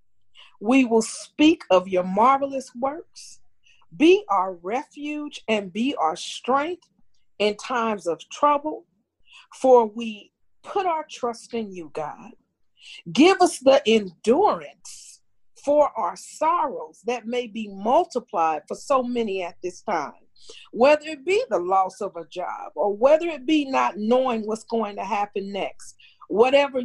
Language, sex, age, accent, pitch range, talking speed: English, female, 40-59, American, 190-280 Hz, 140 wpm